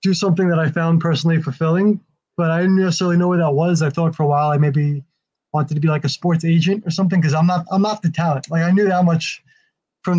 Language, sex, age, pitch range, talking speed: English, male, 20-39, 150-175 Hz, 260 wpm